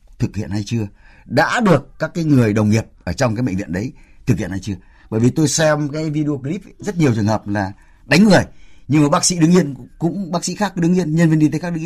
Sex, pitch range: male, 110-165 Hz